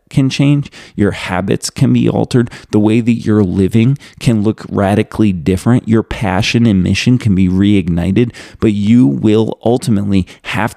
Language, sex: English, male